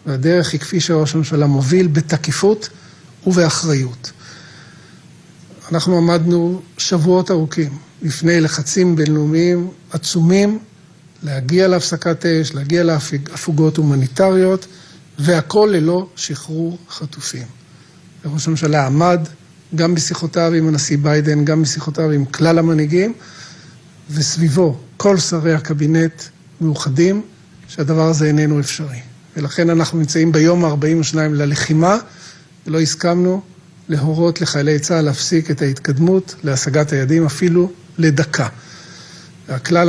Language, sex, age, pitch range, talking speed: Hebrew, male, 50-69, 150-175 Hz, 100 wpm